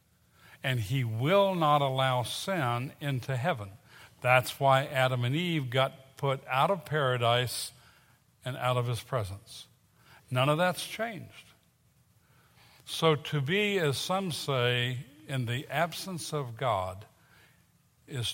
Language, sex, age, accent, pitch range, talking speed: English, male, 60-79, American, 120-150 Hz, 130 wpm